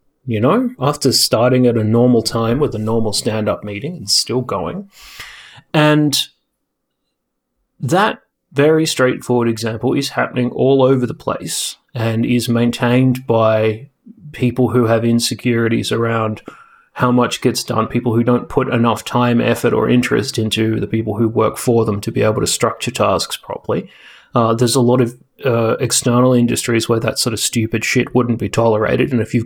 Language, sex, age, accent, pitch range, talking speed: English, male, 30-49, Australian, 115-135 Hz, 170 wpm